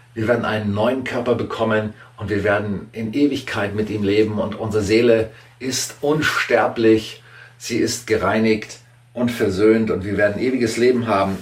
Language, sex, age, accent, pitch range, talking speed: German, male, 40-59, German, 115-135 Hz, 160 wpm